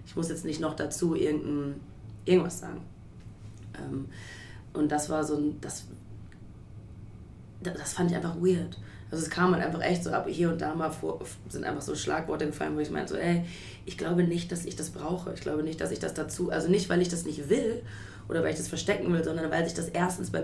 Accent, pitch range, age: German, 135-175 Hz, 20-39